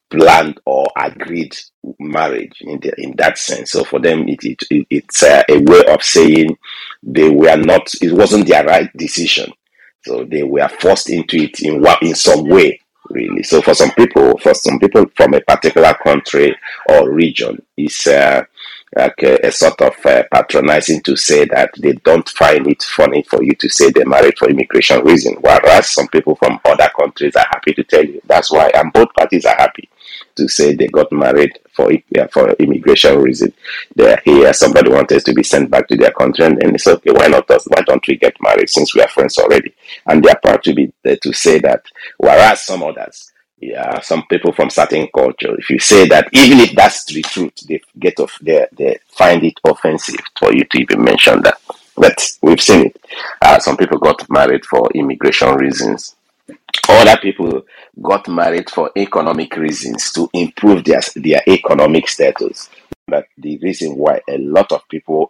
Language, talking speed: English, 190 wpm